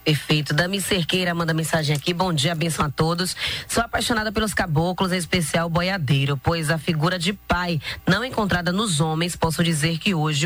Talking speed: 185 wpm